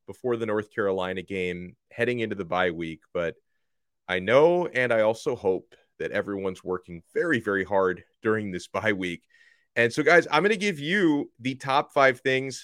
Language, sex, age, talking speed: English, male, 30-49, 185 wpm